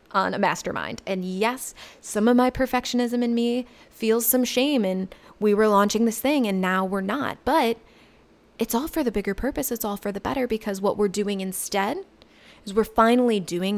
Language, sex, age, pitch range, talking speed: English, female, 20-39, 200-250 Hz, 195 wpm